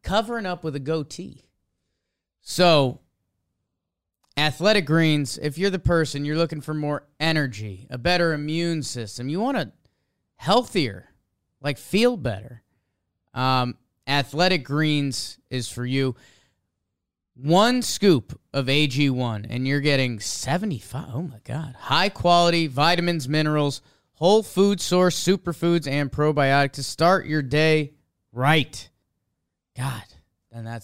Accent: American